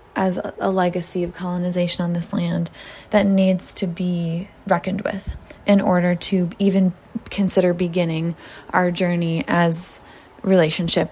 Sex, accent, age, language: female, American, 20-39, English